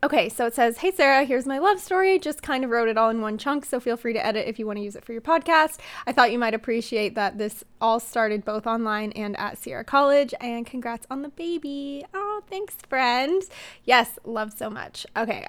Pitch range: 220-270 Hz